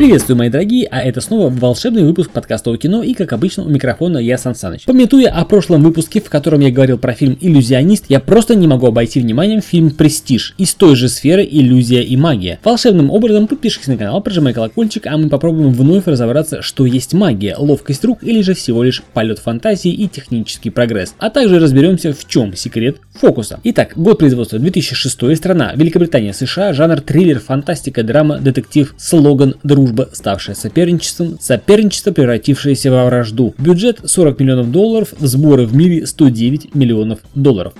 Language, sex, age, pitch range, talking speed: Russian, male, 20-39, 125-185 Hz, 170 wpm